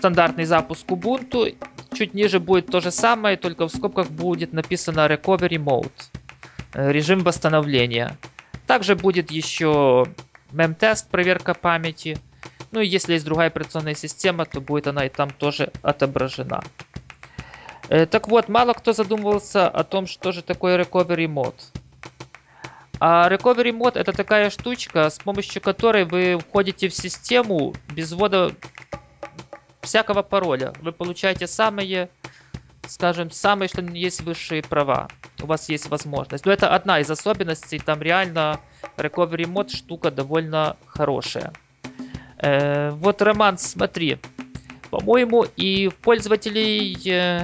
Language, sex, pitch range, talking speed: Russian, male, 155-200 Hz, 125 wpm